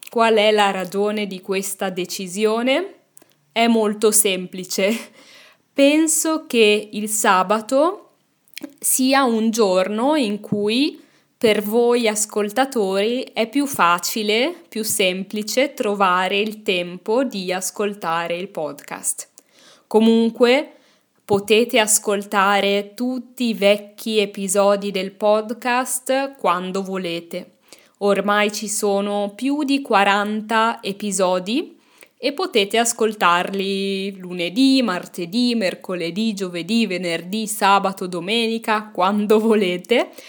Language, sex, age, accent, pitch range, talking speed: Italian, female, 10-29, native, 195-245 Hz, 95 wpm